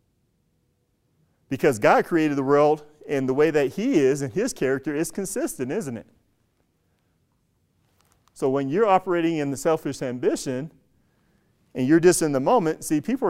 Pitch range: 120-155 Hz